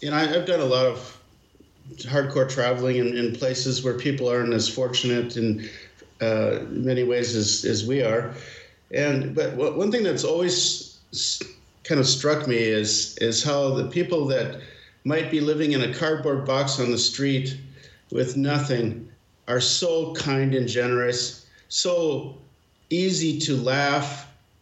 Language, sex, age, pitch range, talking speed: English, male, 50-69, 125-150 Hz, 150 wpm